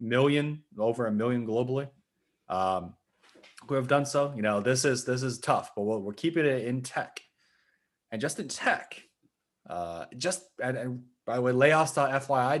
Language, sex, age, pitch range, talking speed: English, male, 20-39, 110-135 Hz, 165 wpm